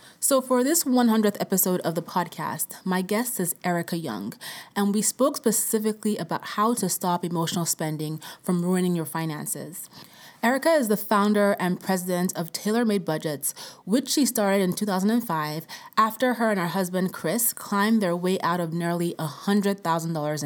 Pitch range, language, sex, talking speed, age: 170-220 Hz, English, female, 160 wpm, 30-49